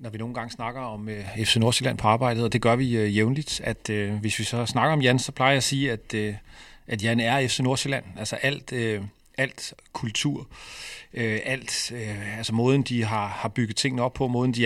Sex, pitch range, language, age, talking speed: male, 110-130 Hz, Danish, 40-59, 230 wpm